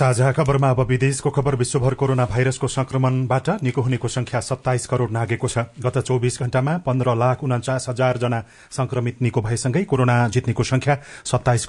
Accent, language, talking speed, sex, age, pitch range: Indian, English, 155 wpm, male, 40-59, 120-135 Hz